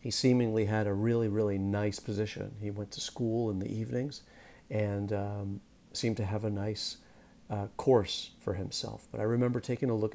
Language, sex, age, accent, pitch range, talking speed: English, male, 40-59, American, 100-115 Hz, 190 wpm